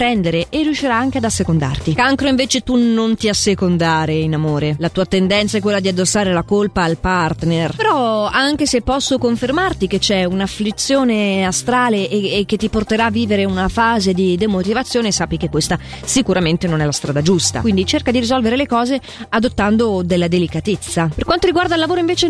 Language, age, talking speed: Italian, 30-49, 185 wpm